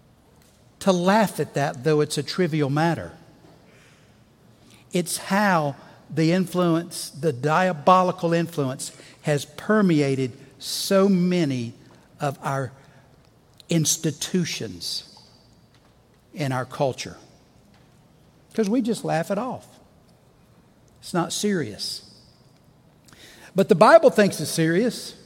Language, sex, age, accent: English, male, 60-79, American